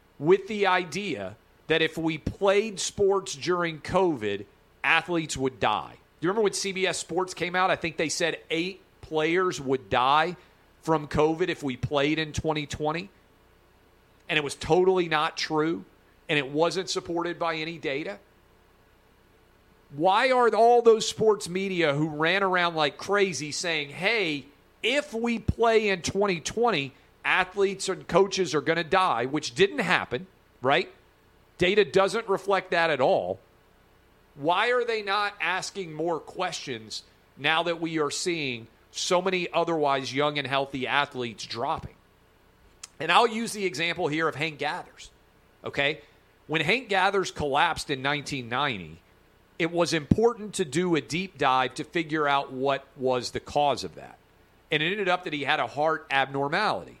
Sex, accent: male, American